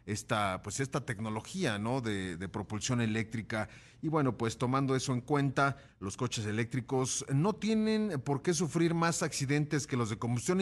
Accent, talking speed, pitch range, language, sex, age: Mexican, 170 wpm, 115-145 Hz, Spanish, male, 40-59